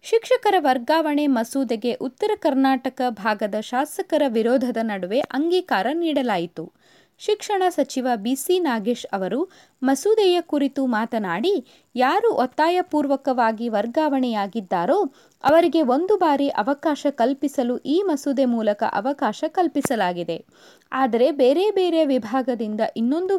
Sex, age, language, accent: female, 20-39, Kannada, native